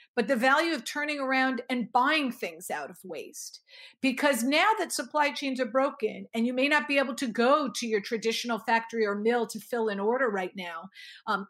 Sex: female